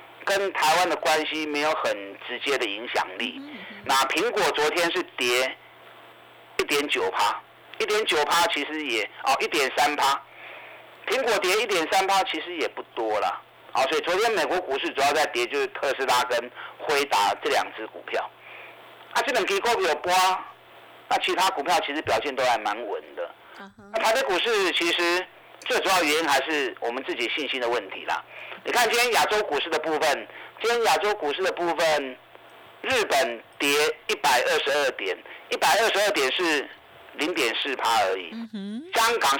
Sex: male